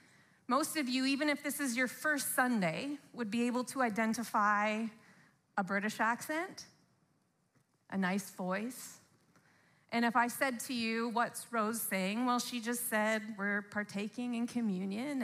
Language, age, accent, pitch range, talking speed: English, 30-49, American, 215-280 Hz, 150 wpm